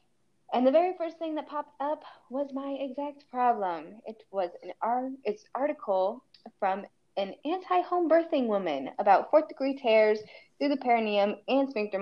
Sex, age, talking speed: female, 10-29, 160 wpm